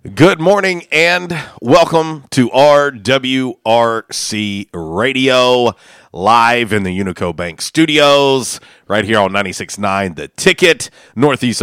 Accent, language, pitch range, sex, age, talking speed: American, English, 100-135 Hz, male, 40-59, 105 wpm